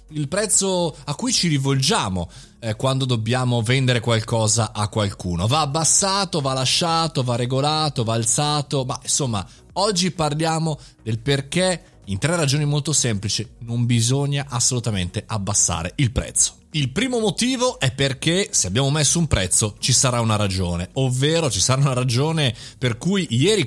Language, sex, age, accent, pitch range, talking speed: Italian, male, 30-49, native, 110-145 Hz, 150 wpm